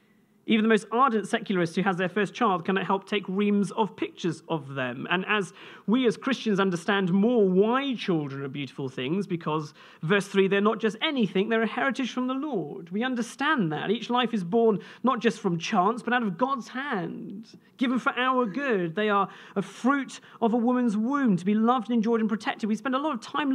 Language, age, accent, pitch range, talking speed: English, 40-59, British, 190-240 Hz, 215 wpm